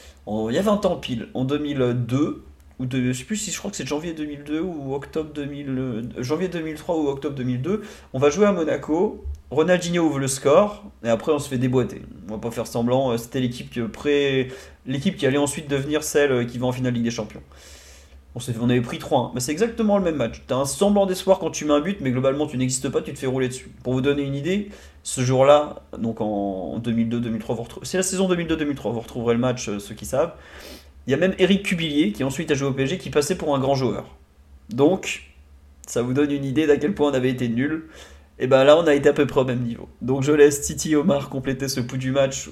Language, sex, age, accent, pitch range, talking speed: French, male, 30-49, French, 115-150 Hz, 245 wpm